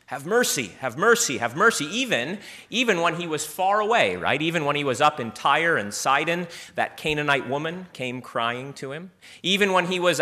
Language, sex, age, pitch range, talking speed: English, male, 30-49, 120-165 Hz, 200 wpm